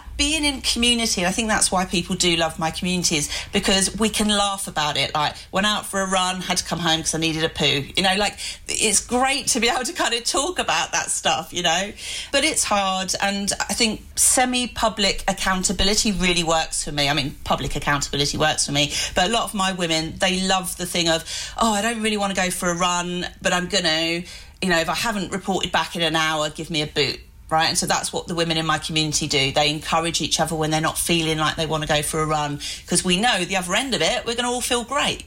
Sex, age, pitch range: female, 40-59, 165-215 Hz